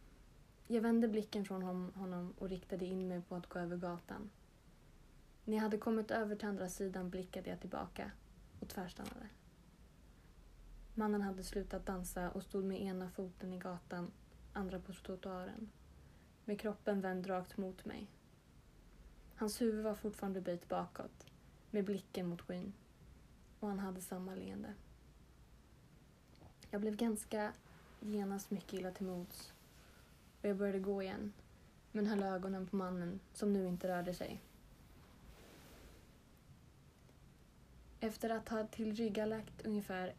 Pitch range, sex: 185-210 Hz, female